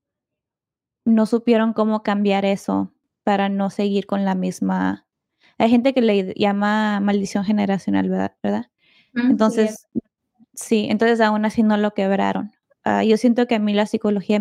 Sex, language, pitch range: female, English, 205-230 Hz